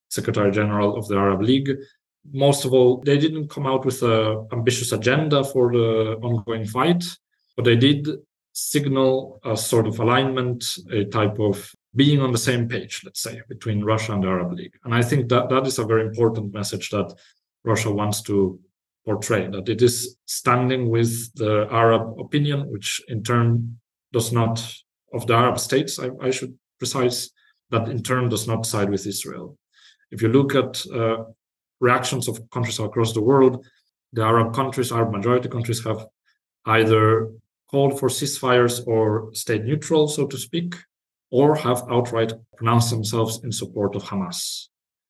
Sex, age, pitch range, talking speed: male, 40-59, 110-130 Hz, 170 wpm